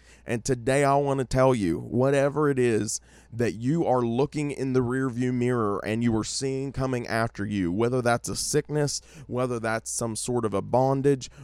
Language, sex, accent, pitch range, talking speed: English, male, American, 110-135 Hz, 190 wpm